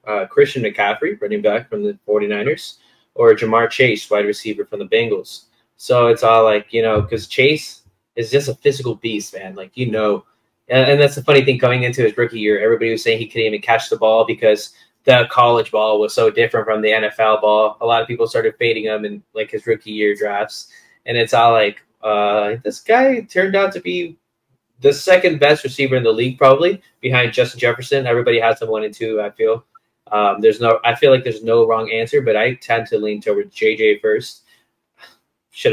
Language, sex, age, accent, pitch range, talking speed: English, male, 20-39, American, 110-175 Hz, 210 wpm